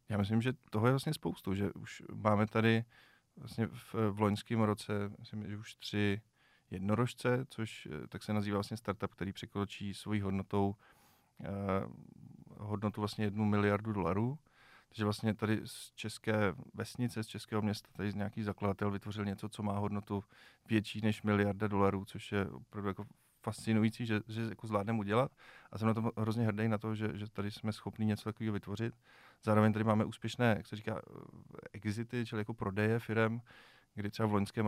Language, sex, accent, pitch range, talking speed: Czech, male, native, 105-115 Hz, 175 wpm